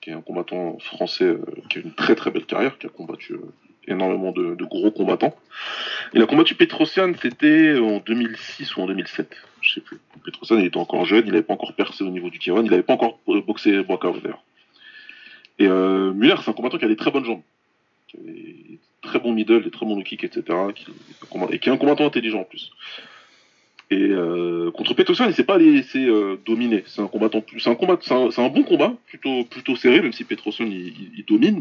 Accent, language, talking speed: French, French, 230 wpm